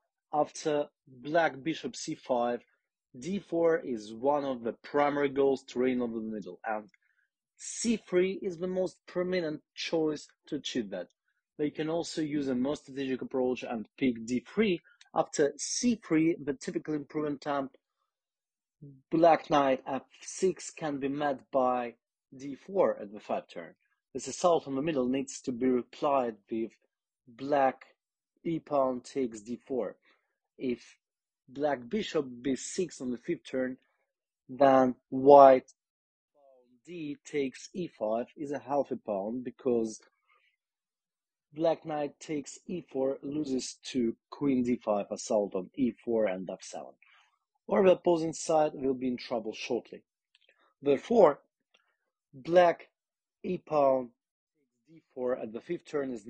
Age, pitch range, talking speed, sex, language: 30-49, 125-160 Hz, 135 wpm, male, English